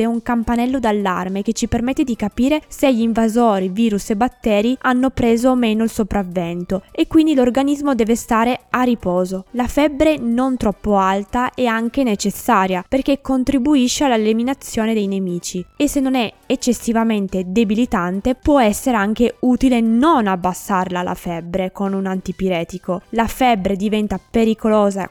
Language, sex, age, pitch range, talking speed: Italian, female, 20-39, 195-250 Hz, 145 wpm